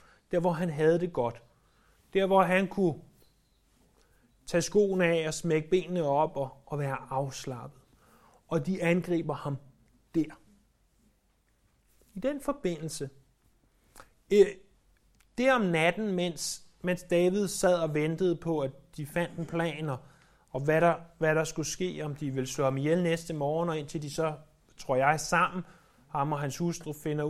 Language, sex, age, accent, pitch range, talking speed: Danish, male, 30-49, native, 135-175 Hz, 160 wpm